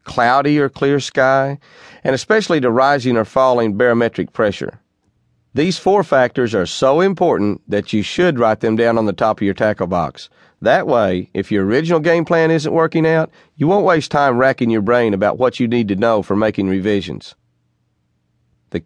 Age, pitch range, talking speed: 40-59, 100-155 Hz, 185 wpm